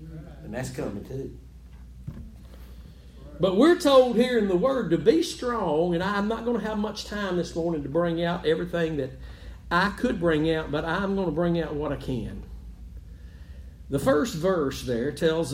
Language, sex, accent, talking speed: English, male, American, 180 wpm